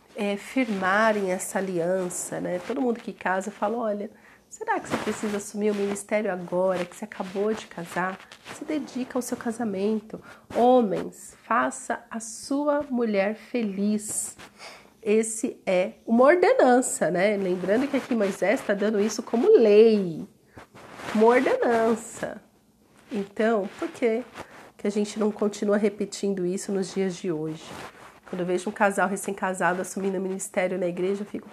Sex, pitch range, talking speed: female, 190-230 Hz, 145 wpm